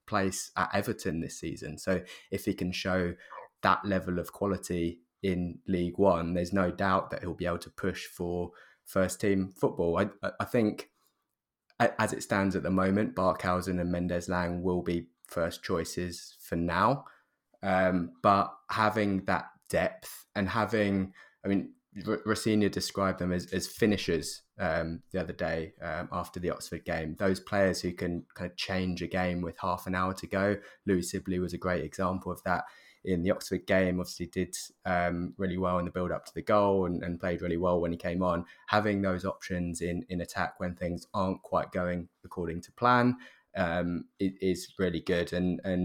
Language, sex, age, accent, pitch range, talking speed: English, male, 20-39, British, 85-95 Hz, 185 wpm